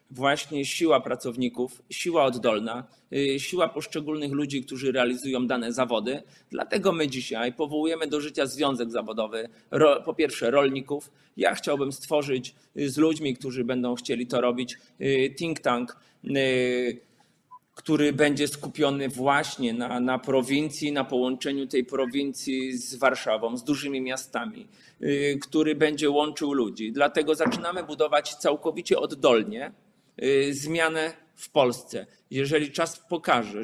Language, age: Polish, 30-49